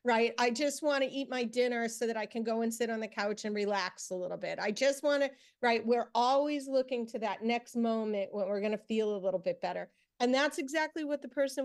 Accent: American